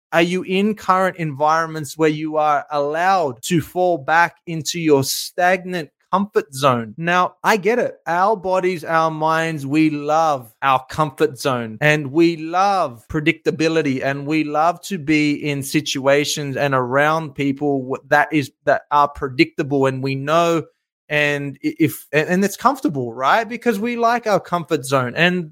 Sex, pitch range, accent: male, 145-170 Hz, Australian